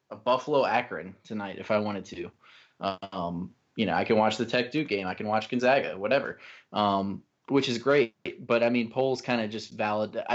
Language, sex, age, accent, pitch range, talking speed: English, male, 20-39, American, 105-125 Hz, 190 wpm